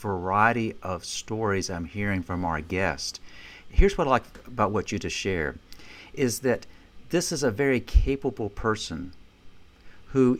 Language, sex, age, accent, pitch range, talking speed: English, male, 50-69, American, 90-110 Hz, 150 wpm